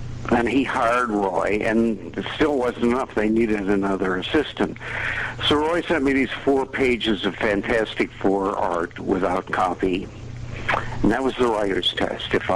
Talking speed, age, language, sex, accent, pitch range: 160 wpm, 60-79, French, male, American, 100-120 Hz